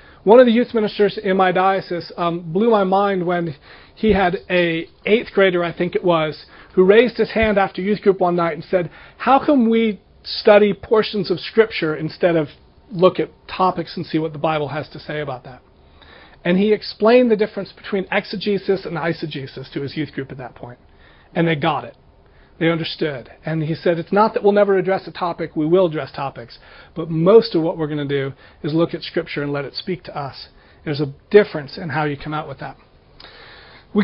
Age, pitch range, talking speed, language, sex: 40-59, 160-205 Hz, 215 wpm, English, male